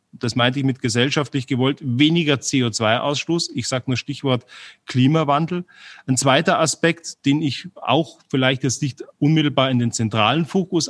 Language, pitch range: German, 130-170 Hz